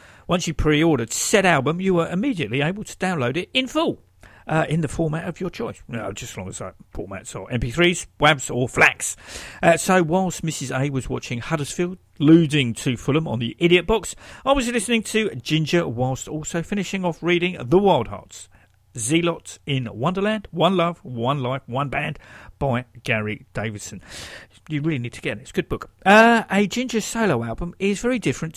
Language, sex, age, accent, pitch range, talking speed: English, male, 50-69, British, 125-195 Hz, 195 wpm